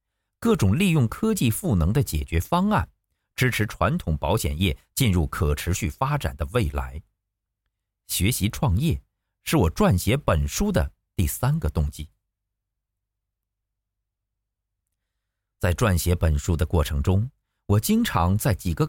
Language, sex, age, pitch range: Chinese, male, 50-69, 90-110 Hz